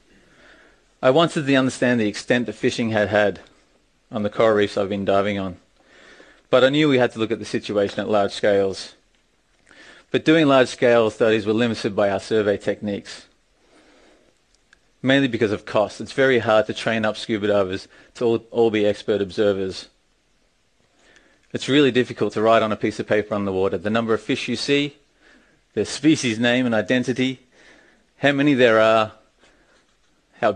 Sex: male